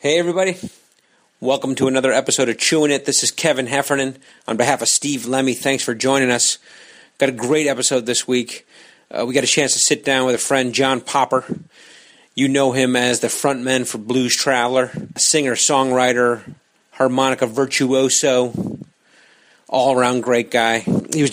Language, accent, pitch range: English, American, 120-135 Hz